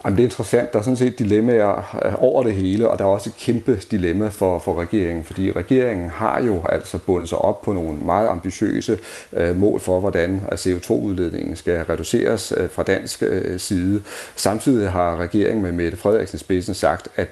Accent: native